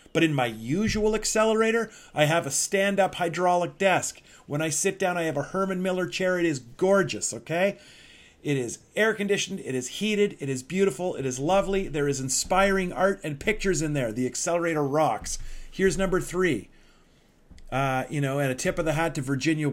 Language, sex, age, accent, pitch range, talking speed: English, male, 40-59, American, 135-185 Hz, 190 wpm